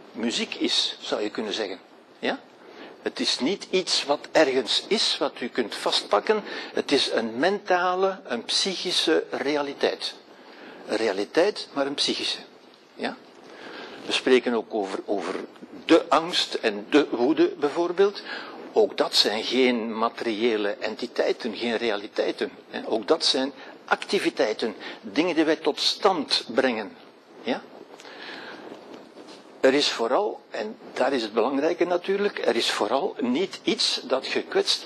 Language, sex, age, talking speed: Dutch, male, 60-79, 135 wpm